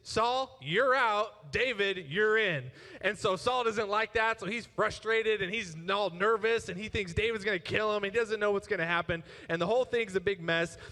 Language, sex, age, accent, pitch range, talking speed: English, male, 20-39, American, 185-230 Hz, 215 wpm